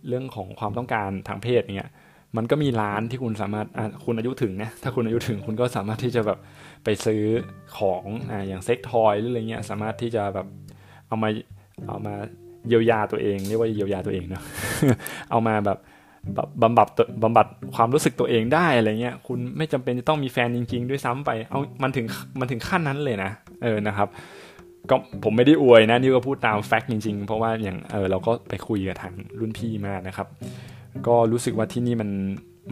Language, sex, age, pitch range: Thai, male, 20-39, 100-120 Hz